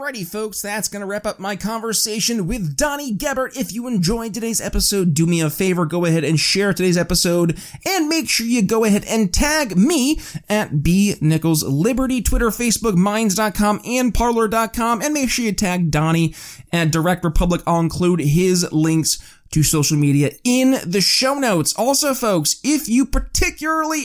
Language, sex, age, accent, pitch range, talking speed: English, male, 30-49, American, 170-230 Hz, 165 wpm